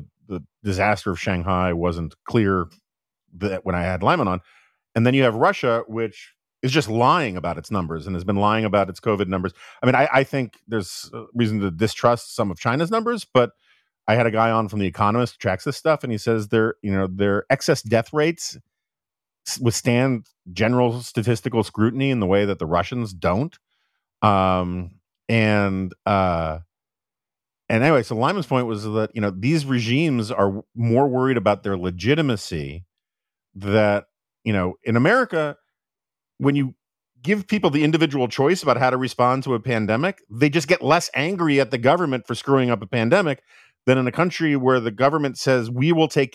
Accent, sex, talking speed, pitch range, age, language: American, male, 185 wpm, 105-135 Hz, 40-59, English